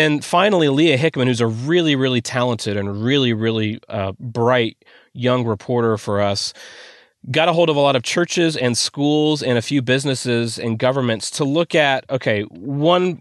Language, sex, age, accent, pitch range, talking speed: English, male, 30-49, American, 115-145 Hz, 175 wpm